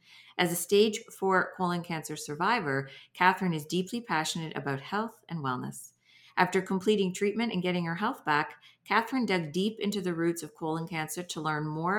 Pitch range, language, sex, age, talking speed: 150-195 Hz, English, female, 40-59, 175 wpm